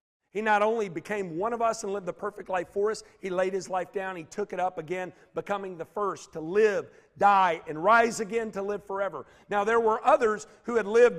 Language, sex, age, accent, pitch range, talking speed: English, male, 50-69, American, 170-210 Hz, 230 wpm